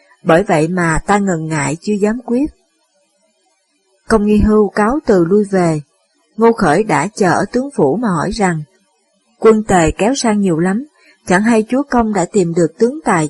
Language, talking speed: Vietnamese, 185 wpm